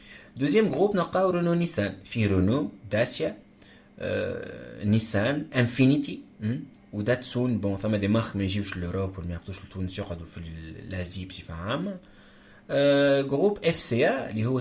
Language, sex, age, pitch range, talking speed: Arabic, male, 30-49, 95-115 Hz, 120 wpm